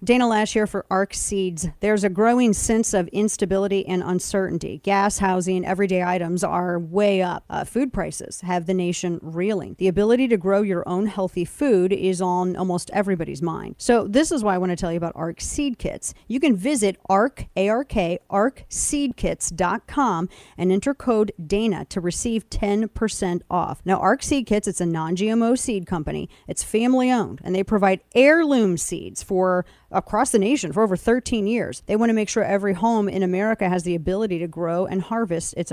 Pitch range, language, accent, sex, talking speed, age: 185-225 Hz, English, American, female, 185 wpm, 40-59